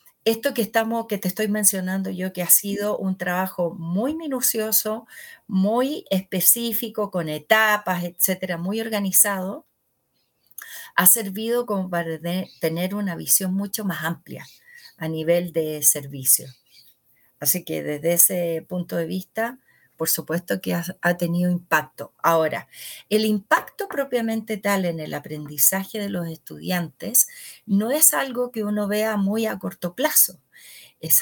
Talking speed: 140 wpm